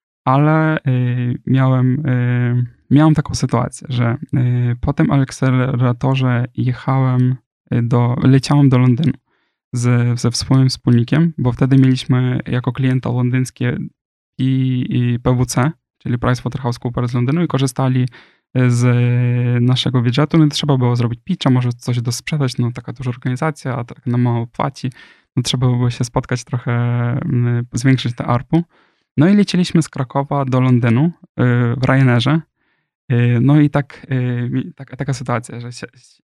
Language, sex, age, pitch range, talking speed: Polish, male, 10-29, 120-140 Hz, 130 wpm